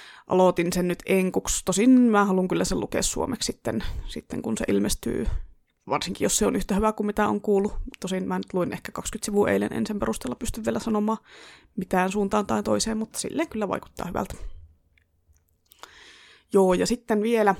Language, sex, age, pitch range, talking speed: Finnish, female, 20-39, 185-230 Hz, 180 wpm